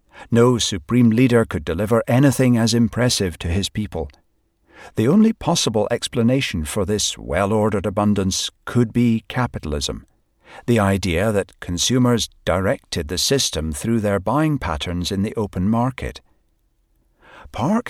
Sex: male